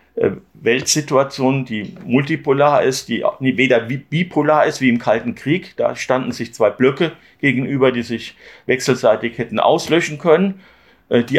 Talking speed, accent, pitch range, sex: 130 wpm, German, 125-155 Hz, male